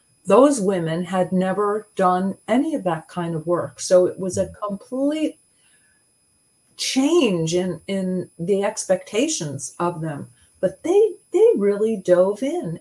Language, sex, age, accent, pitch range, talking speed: English, female, 40-59, American, 170-220 Hz, 135 wpm